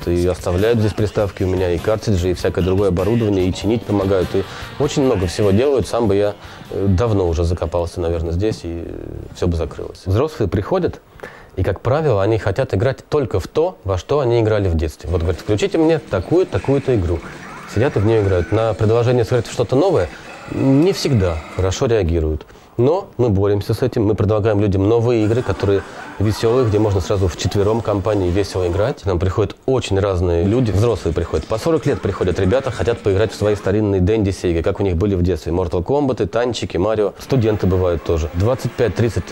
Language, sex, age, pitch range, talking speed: Russian, male, 20-39, 95-115 Hz, 190 wpm